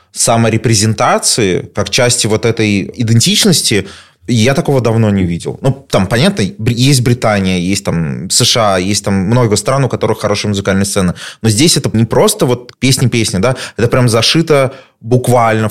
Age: 20-39